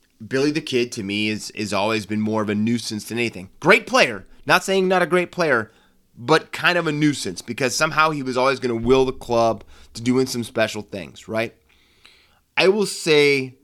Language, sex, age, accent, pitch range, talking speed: English, male, 30-49, American, 105-140 Hz, 210 wpm